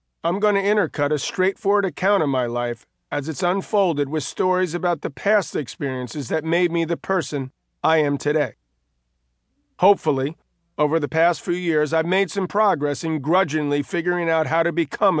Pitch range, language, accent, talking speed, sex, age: 125-175 Hz, English, American, 175 wpm, male, 40-59